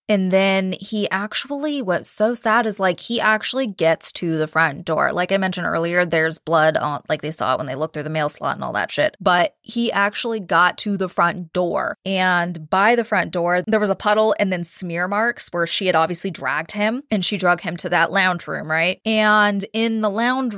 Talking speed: 225 wpm